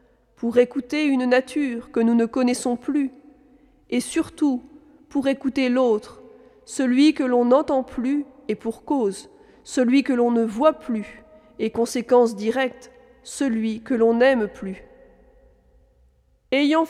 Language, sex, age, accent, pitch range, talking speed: French, female, 40-59, French, 235-285 Hz, 130 wpm